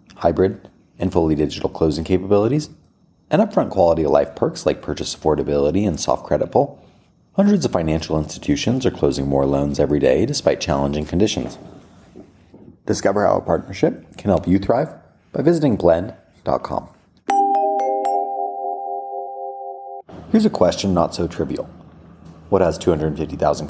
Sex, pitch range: male, 70-90 Hz